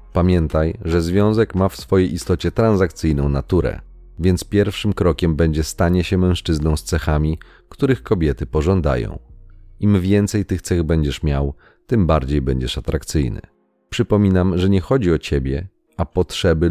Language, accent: Polish, native